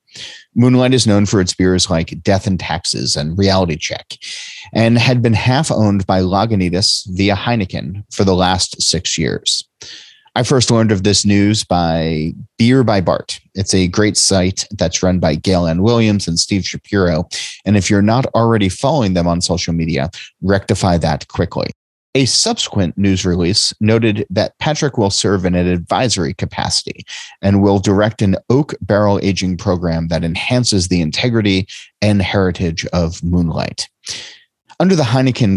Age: 30-49